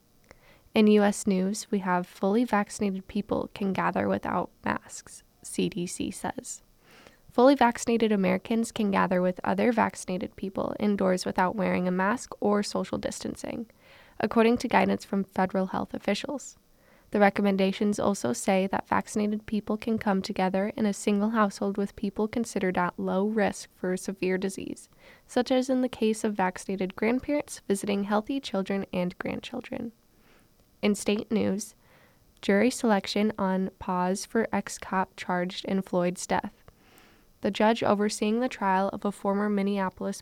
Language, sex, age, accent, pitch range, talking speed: English, female, 10-29, American, 190-225 Hz, 145 wpm